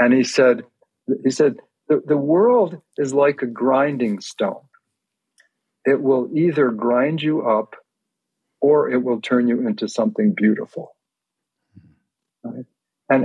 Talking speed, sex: 125 wpm, male